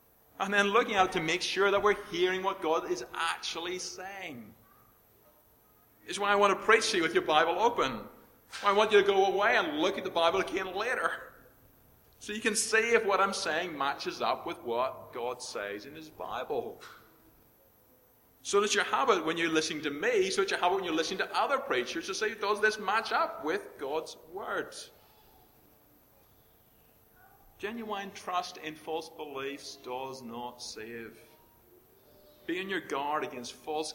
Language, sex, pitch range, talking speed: English, male, 155-210 Hz, 180 wpm